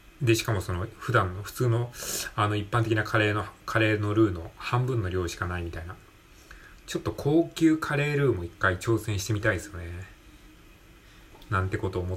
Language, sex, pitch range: Japanese, male, 95-120 Hz